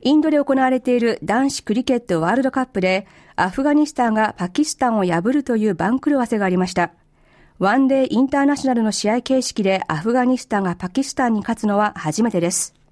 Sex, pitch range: female, 190-255 Hz